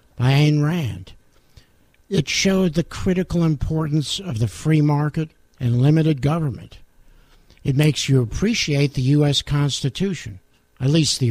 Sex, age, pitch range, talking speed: male, 60-79, 120-165 Hz, 115 wpm